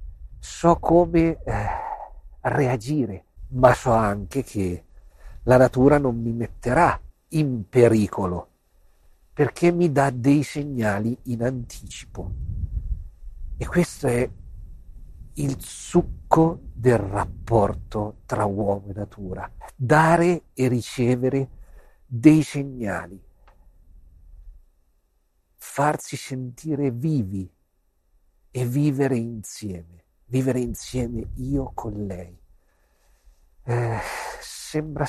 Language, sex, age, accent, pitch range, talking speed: Italian, male, 50-69, native, 90-135 Hz, 85 wpm